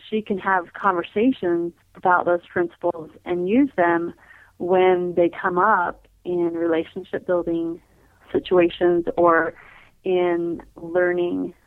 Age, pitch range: 30-49, 170-190 Hz